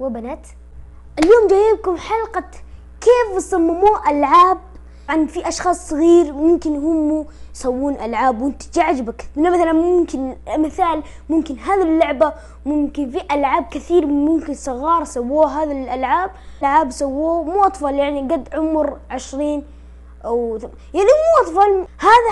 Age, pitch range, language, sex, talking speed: 20-39, 285-365 Hz, Arabic, female, 130 wpm